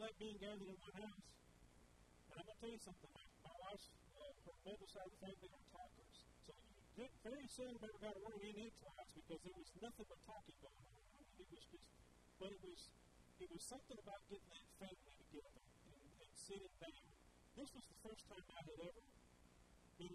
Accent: American